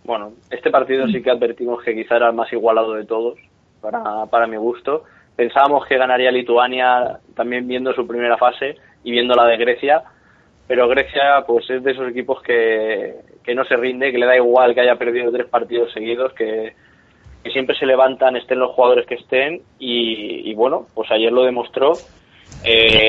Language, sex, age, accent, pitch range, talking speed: Spanish, male, 20-39, Spanish, 120-130 Hz, 185 wpm